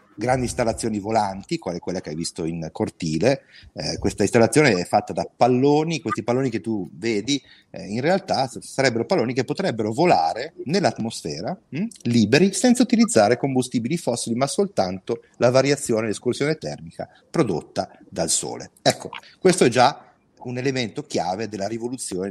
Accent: native